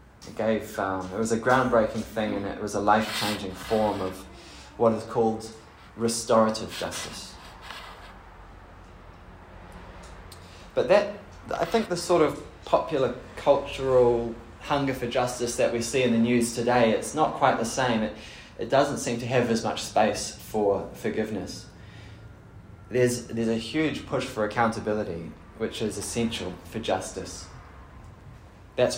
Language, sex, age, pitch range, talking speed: English, male, 20-39, 95-120 Hz, 140 wpm